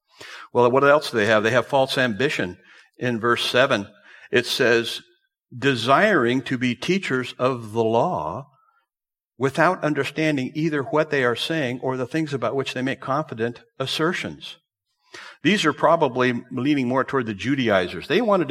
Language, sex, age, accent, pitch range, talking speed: English, male, 60-79, American, 115-140 Hz, 155 wpm